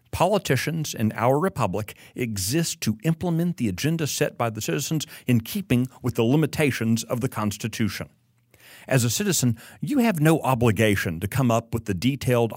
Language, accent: English, American